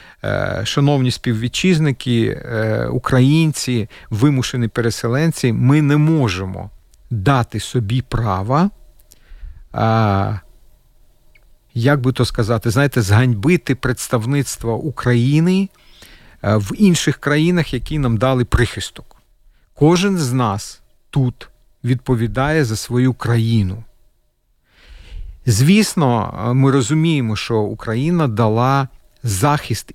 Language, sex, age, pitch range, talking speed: Ukrainian, male, 40-59, 110-145 Hz, 80 wpm